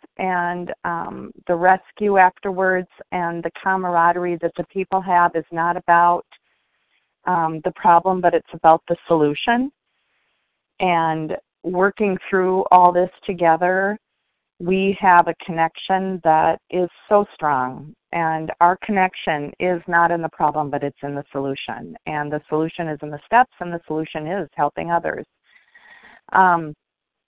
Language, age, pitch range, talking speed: English, 40-59, 160-190 Hz, 140 wpm